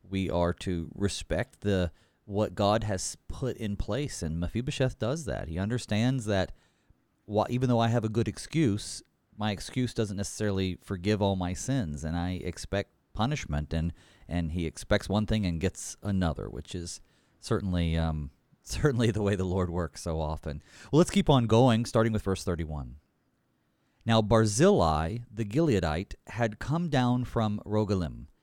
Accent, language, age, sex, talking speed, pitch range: American, English, 40-59, male, 160 wpm, 90-125 Hz